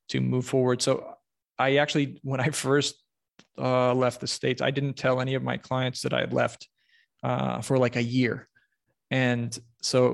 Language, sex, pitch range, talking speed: English, male, 130-145 Hz, 190 wpm